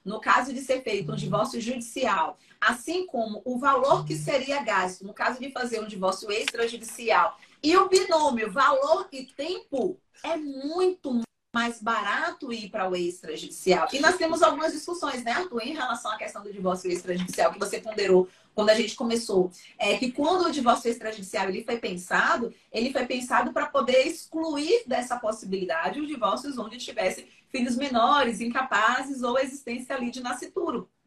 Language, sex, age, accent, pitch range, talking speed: Portuguese, female, 30-49, Brazilian, 210-290 Hz, 170 wpm